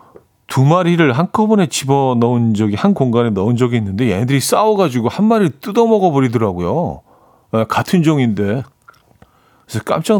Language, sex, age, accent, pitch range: Korean, male, 40-59, native, 105-145 Hz